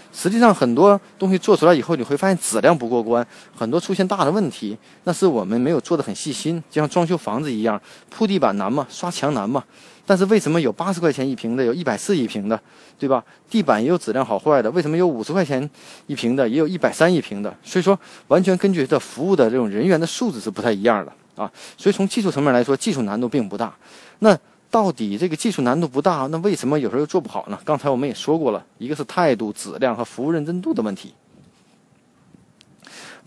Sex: male